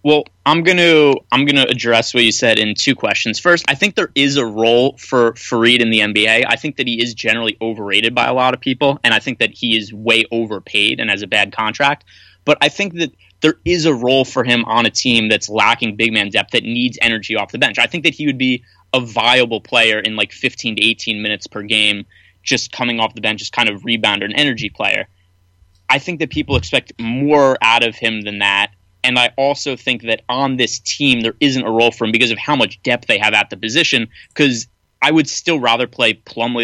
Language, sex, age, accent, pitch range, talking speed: English, male, 20-39, American, 110-135 Hz, 240 wpm